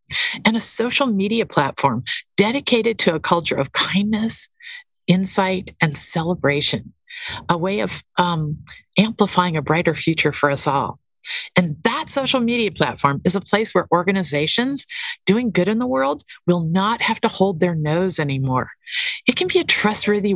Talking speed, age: 155 wpm, 50-69